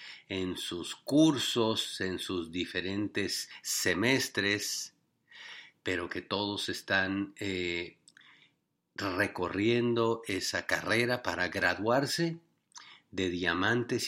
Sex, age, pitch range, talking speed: male, 50-69, 95-120 Hz, 80 wpm